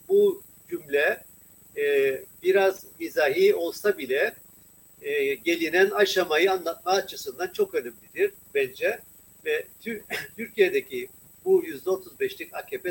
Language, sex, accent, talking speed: Turkish, male, native, 85 wpm